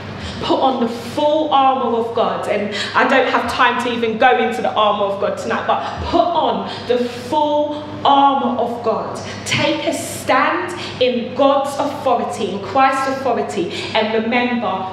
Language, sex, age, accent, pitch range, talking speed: English, female, 20-39, British, 235-275 Hz, 160 wpm